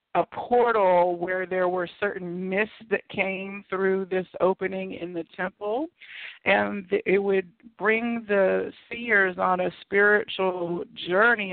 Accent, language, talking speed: American, English, 130 wpm